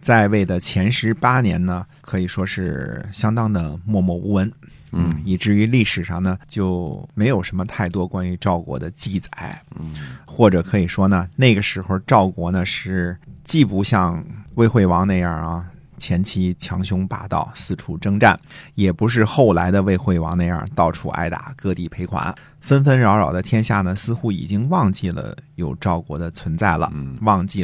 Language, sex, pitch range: Chinese, male, 90-110 Hz